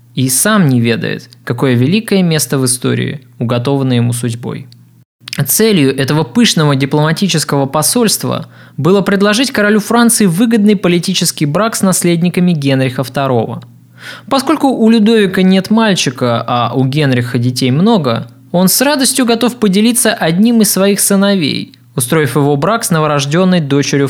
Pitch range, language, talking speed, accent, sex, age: 130-205 Hz, Russian, 130 wpm, native, male, 20-39